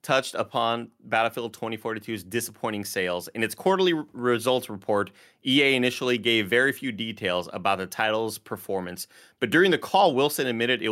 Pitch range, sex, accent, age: 100-125 Hz, male, American, 30-49